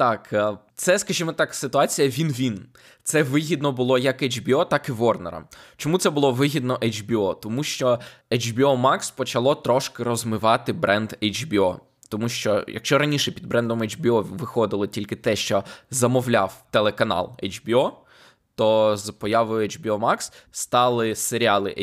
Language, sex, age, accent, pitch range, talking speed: Ukrainian, male, 20-39, native, 110-140 Hz, 135 wpm